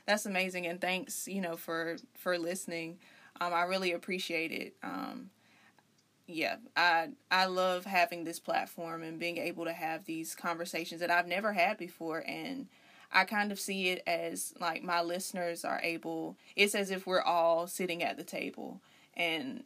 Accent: American